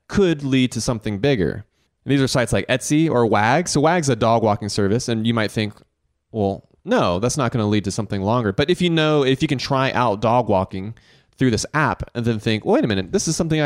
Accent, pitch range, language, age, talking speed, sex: American, 100-130 Hz, English, 30-49, 245 wpm, male